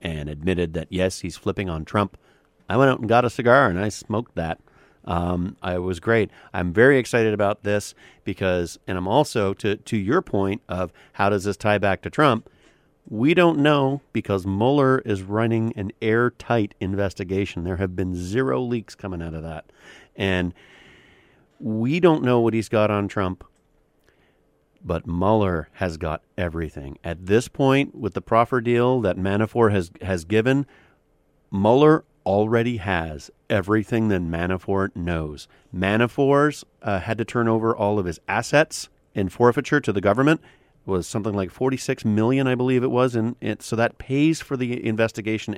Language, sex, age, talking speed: English, male, 40-59, 170 wpm